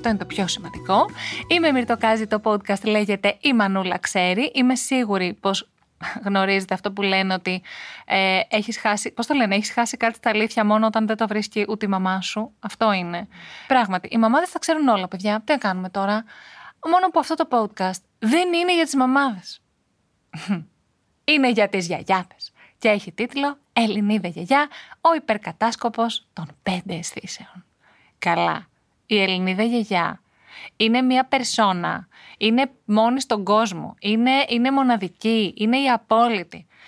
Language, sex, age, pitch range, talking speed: Greek, female, 20-39, 195-245 Hz, 155 wpm